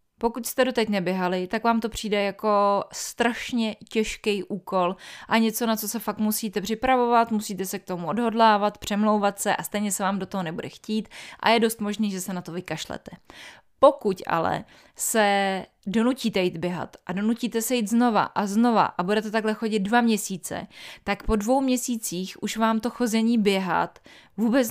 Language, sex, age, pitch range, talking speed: Czech, female, 20-39, 195-235 Hz, 180 wpm